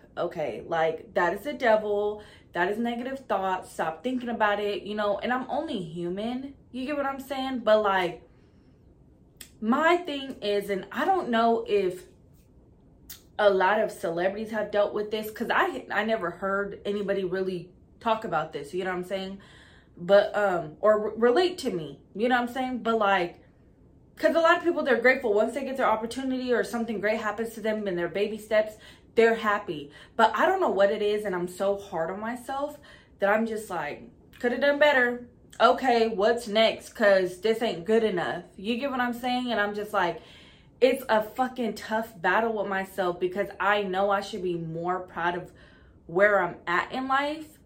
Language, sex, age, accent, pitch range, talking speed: English, female, 20-39, American, 195-240 Hz, 195 wpm